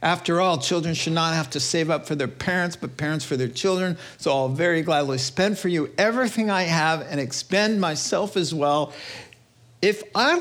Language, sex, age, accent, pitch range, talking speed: English, male, 50-69, American, 125-195 Hz, 195 wpm